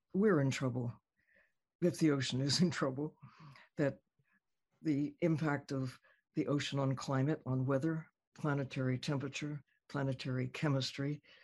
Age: 60-79